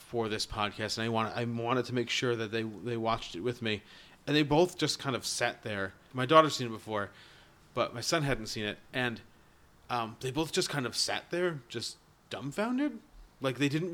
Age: 30-49